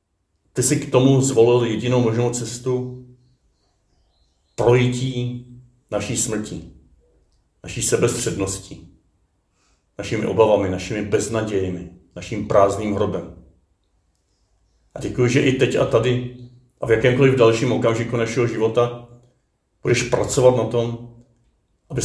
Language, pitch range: Czech, 100-120 Hz